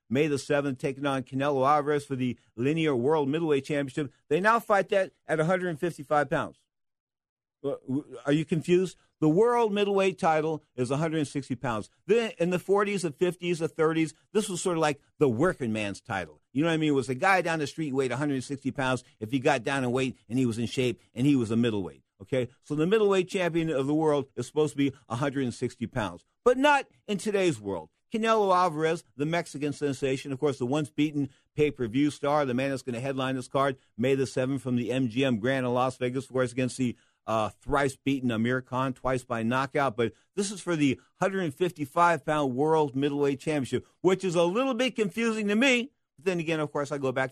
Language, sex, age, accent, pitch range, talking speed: English, male, 50-69, American, 125-160 Hz, 205 wpm